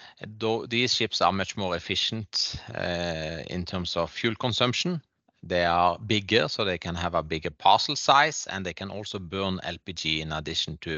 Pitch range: 90-115 Hz